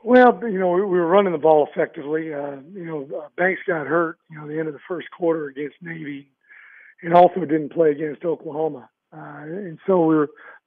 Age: 50-69